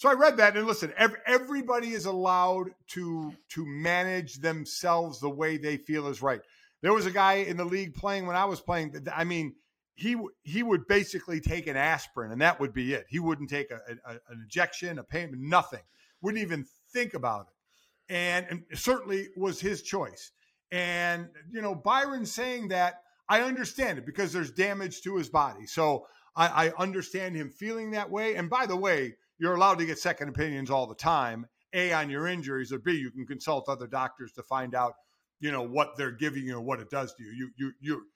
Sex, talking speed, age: male, 210 wpm, 50-69